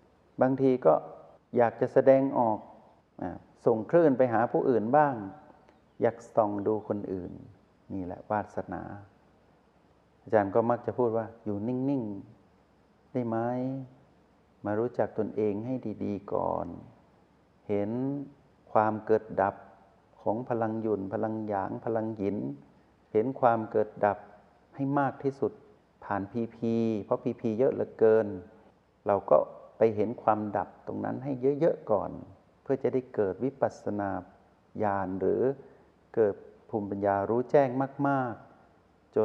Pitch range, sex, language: 100-130 Hz, male, Thai